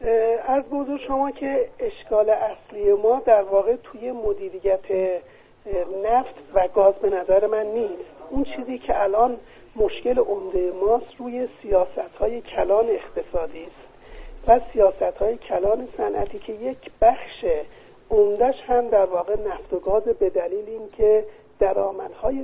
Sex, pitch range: male, 205-285 Hz